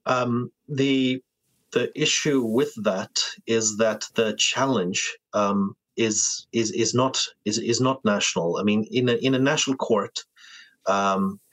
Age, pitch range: 30-49, 105-120 Hz